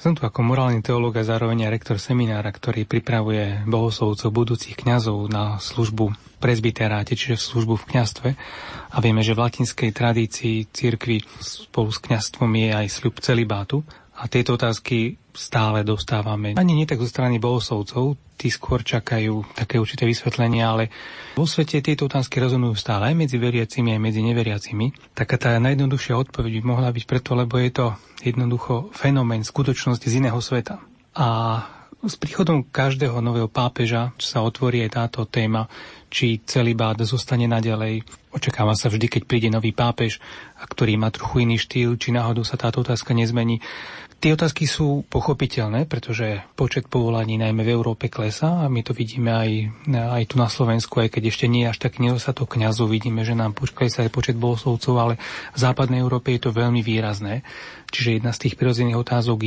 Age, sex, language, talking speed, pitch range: 30-49, male, Slovak, 170 wpm, 115-125 Hz